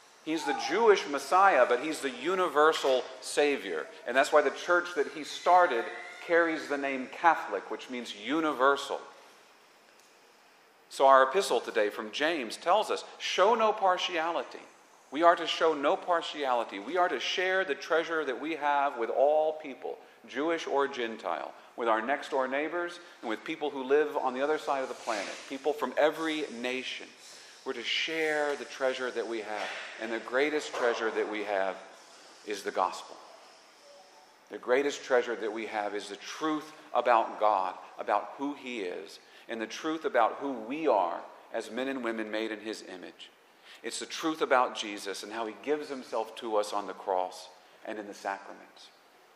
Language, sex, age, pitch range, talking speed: English, male, 40-59, 110-160 Hz, 175 wpm